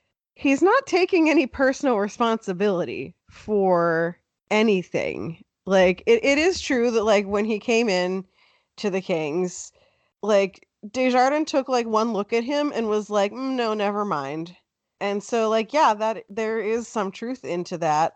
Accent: American